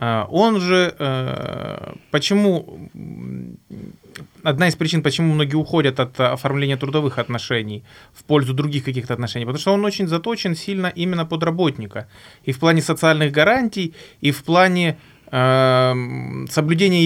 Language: Ukrainian